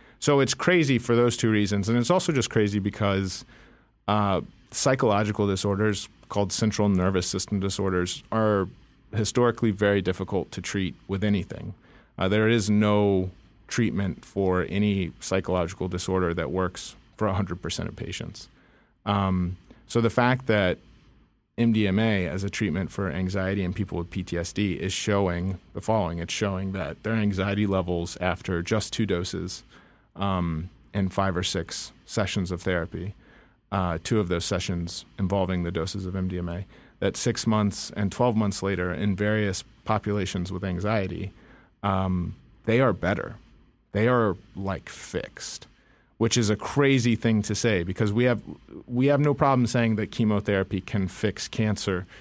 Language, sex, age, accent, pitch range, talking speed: English, male, 30-49, American, 95-110 Hz, 150 wpm